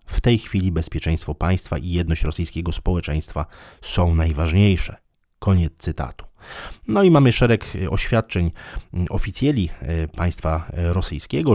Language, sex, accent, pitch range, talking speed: Polish, male, native, 80-95 Hz, 110 wpm